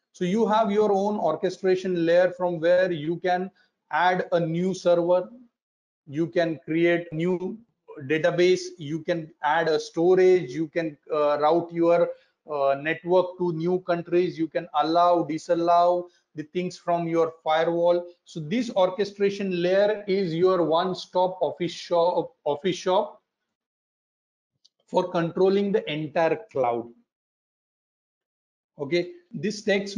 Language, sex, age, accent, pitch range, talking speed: English, male, 40-59, Indian, 170-195 Hz, 130 wpm